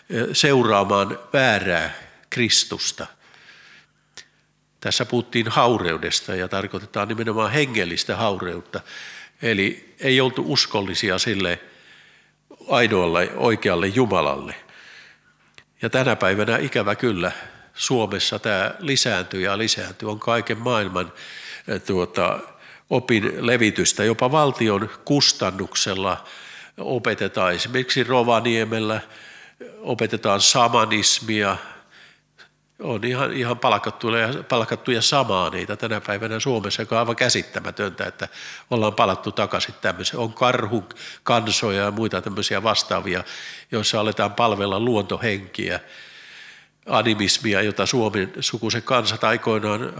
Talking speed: 90 wpm